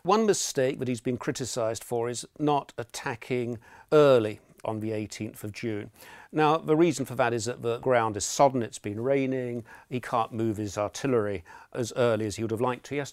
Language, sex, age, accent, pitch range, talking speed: English, male, 50-69, British, 110-140 Hz, 205 wpm